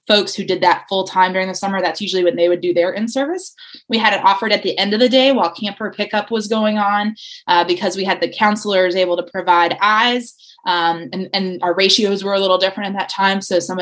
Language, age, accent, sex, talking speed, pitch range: English, 20-39, American, female, 245 wpm, 185-225 Hz